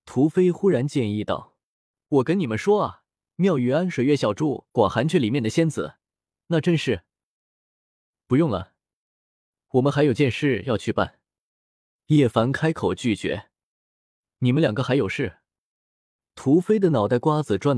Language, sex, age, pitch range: Chinese, male, 20-39, 110-155 Hz